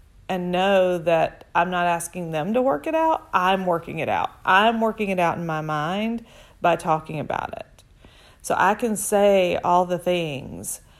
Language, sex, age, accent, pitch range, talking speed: English, female, 40-59, American, 165-200 Hz, 180 wpm